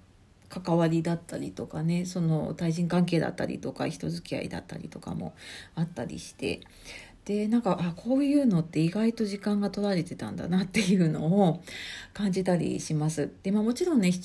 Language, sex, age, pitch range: Japanese, female, 40-59, 160-225 Hz